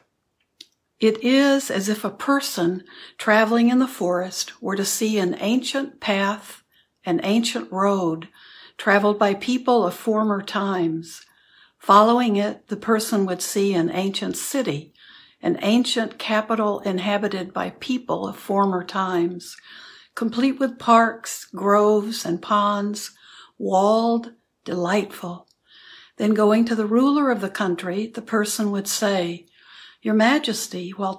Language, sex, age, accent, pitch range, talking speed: English, female, 60-79, American, 185-230 Hz, 125 wpm